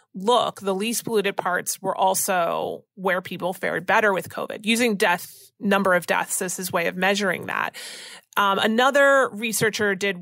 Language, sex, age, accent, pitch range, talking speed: English, female, 30-49, American, 180-230 Hz, 165 wpm